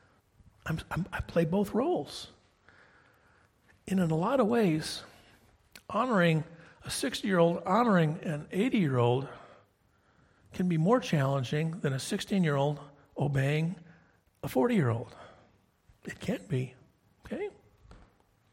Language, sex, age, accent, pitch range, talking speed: English, male, 50-69, American, 125-185 Hz, 95 wpm